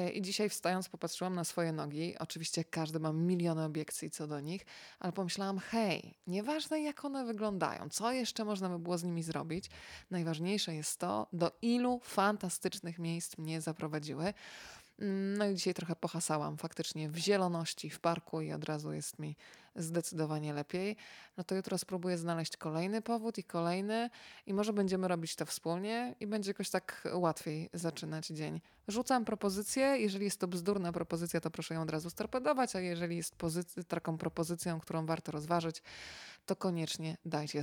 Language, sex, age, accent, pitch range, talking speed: Polish, female, 20-39, native, 165-195 Hz, 165 wpm